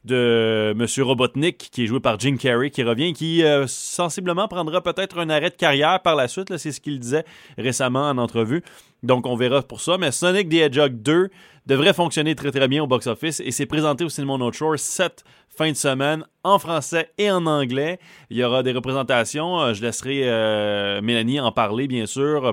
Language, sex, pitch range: French, male, 130-170 Hz